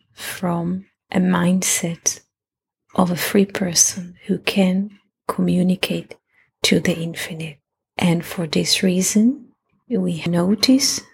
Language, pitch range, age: English, 175-230 Hz, 30-49